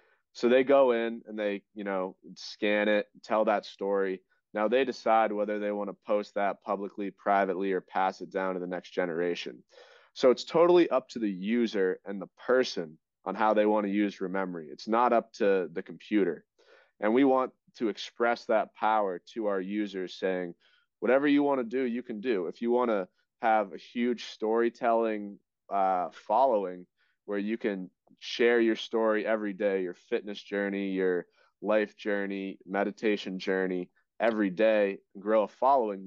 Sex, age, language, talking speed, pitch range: male, 20-39, English, 175 wpm, 95-115 Hz